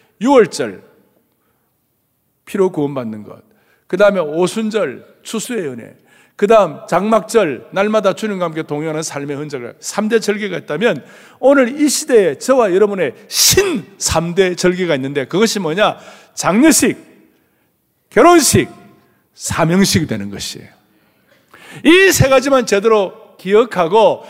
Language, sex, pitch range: Korean, male, 195-260 Hz